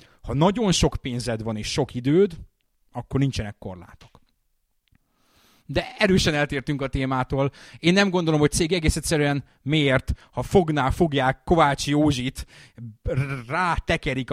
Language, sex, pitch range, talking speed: Hungarian, male, 105-145 Hz, 130 wpm